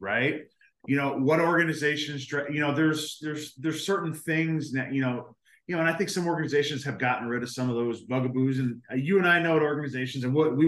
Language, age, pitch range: English, 30-49, 130-155 Hz